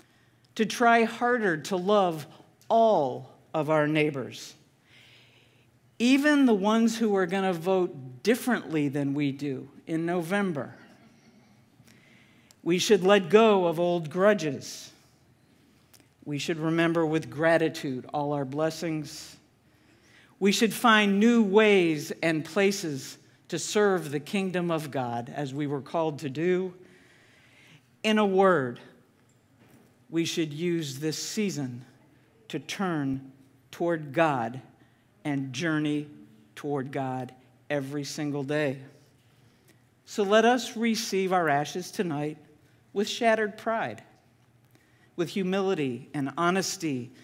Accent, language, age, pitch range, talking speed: American, English, 60-79, 135-190 Hz, 115 wpm